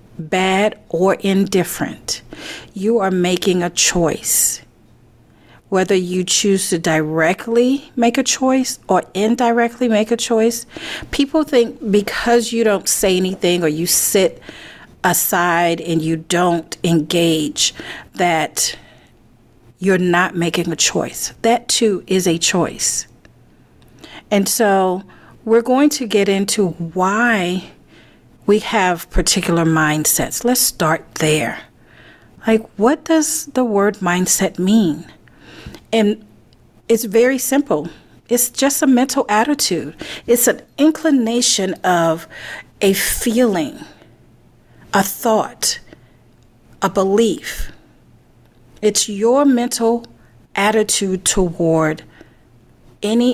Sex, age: female, 40-59